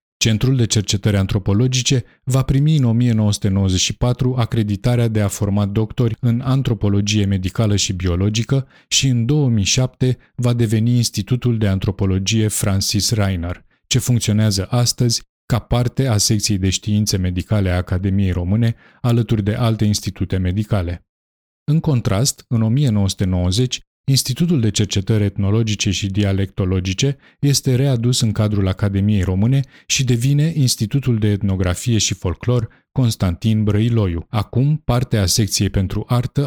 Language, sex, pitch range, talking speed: Romanian, male, 100-125 Hz, 125 wpm